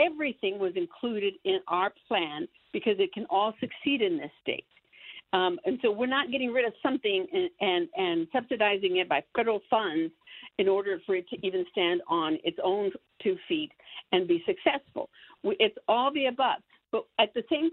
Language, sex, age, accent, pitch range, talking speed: English, female, 60-79, American, 235-335 Hz, 185 wpm